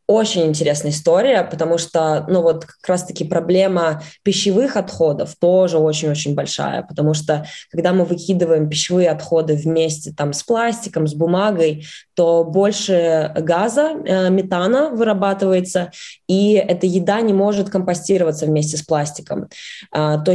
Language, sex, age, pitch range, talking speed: Russian, female, 20-39, 155-190 Hz, 125 wpm